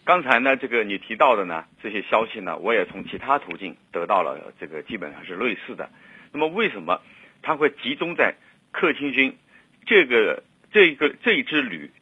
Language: Chinese